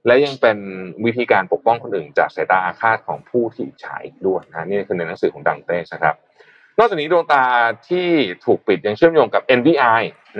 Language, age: Thai, 20-39